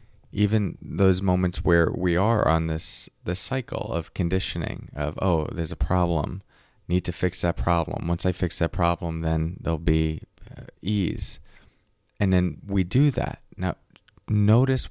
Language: English